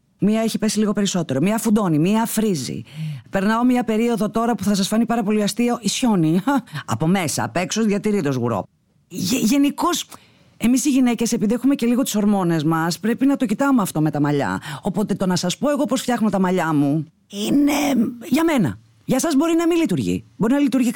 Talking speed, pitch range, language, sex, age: 200 wpm, 135-225 Hz, Greek, female, 30-49